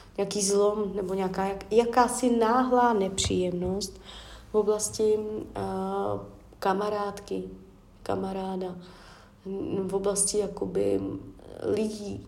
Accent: native